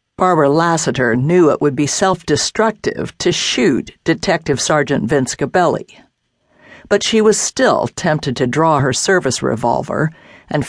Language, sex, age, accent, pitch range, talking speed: English, female, 60-79, American, 135-185 Hz, 140 wpm